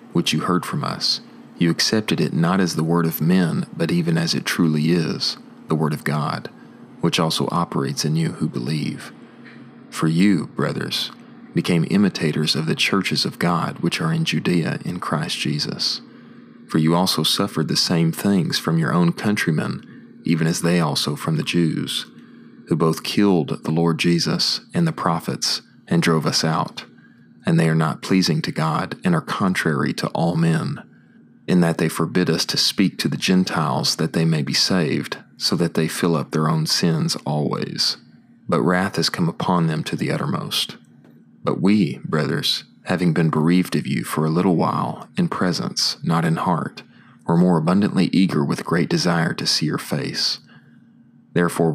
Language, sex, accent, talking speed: English, male, American, 180 wpm